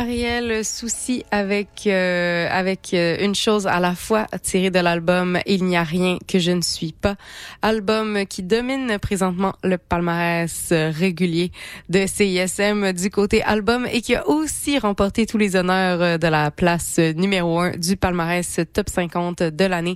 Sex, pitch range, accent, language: female, 170-205 Hz, Canadian, French